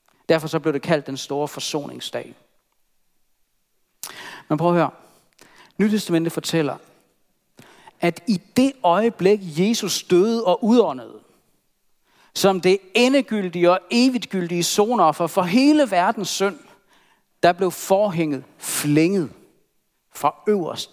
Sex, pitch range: male, 160-225 Hz